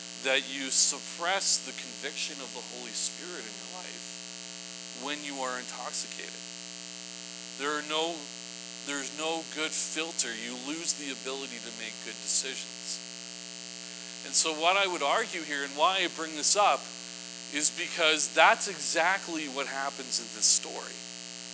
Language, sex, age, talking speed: English, male, 40-59, 150 wpm